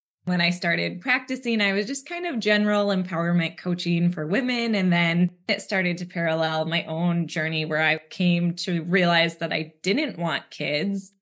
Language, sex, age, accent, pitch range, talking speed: English, female, 20-39, American, 170-205 Hz, 175 wpm